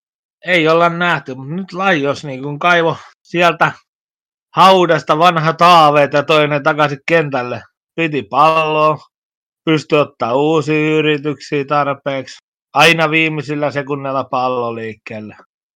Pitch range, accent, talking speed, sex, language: 135-160 Hz, native, 105 wpm, male, Finnish